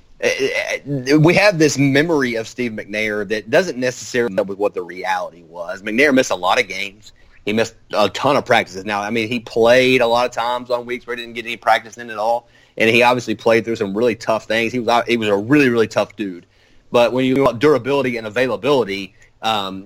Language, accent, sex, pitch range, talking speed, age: English, American, male, 105-130 Hz, 225 wpm, 30-49